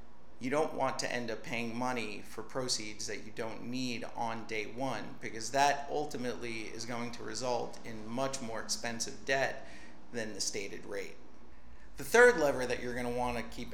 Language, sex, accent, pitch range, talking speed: English, male, American, 115-135 Hz, 190 wpm